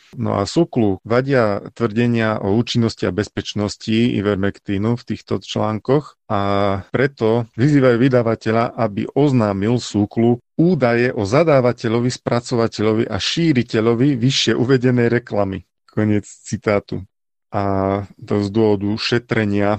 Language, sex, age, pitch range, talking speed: Slovak, male, 40-59, 100-120 Hz, 110 wpm